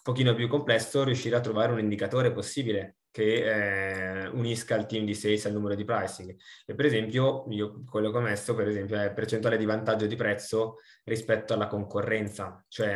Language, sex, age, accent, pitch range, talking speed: Italian, male, 20-39, native, 100-120 Hz, 185 wpm